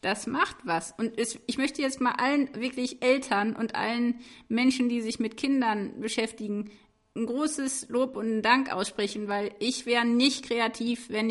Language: German